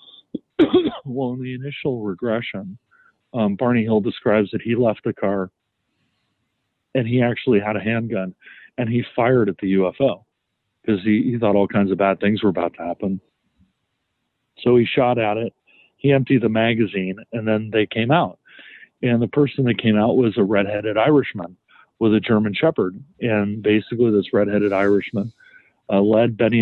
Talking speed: 170 wpm